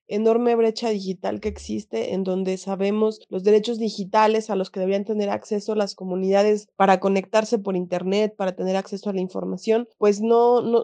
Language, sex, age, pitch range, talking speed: Spanish, female, 30-49, 195-220 Hz, 175 wpm